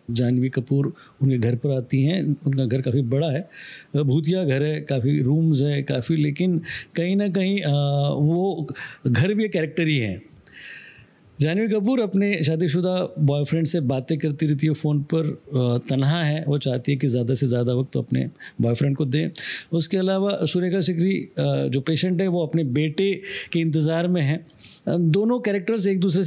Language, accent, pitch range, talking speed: Hindi, native, 135-185 Hz, 175 wpm